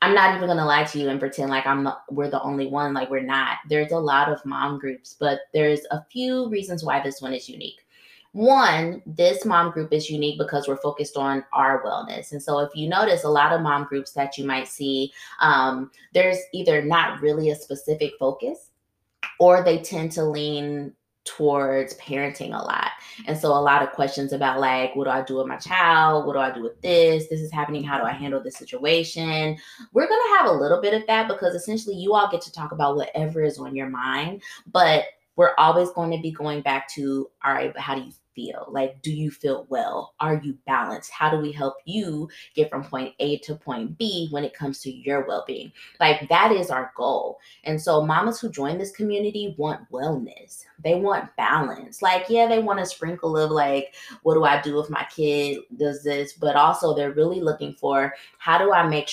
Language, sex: English, female